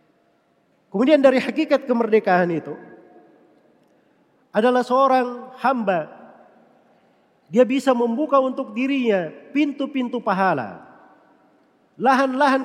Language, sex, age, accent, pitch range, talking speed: Indonesian, male, 40-59, native, 200-265 Hz, 75 wpm